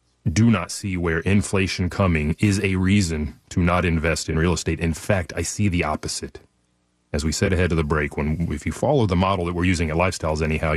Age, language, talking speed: 30-49, English, 225 wpm